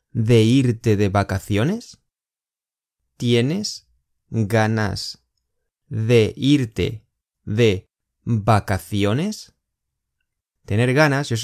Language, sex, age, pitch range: Chinese, male, 20-39, 100-140 Hz